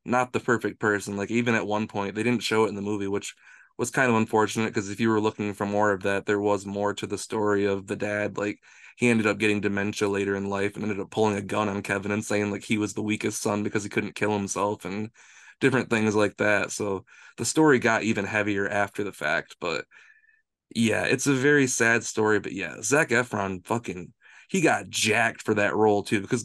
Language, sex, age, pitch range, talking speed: English, male, 20-39, 105-120 Hz, 235 wpm